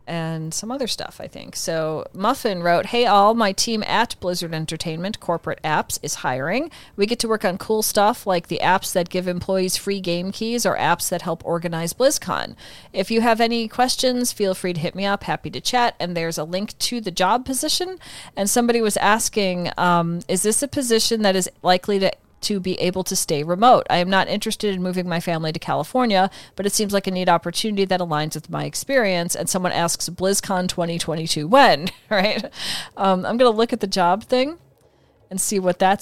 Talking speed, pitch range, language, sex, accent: 210 wpm, 170-220 Hz, English, female, American